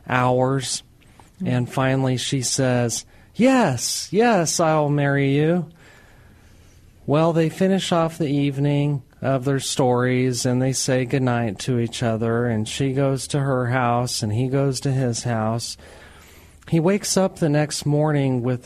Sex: male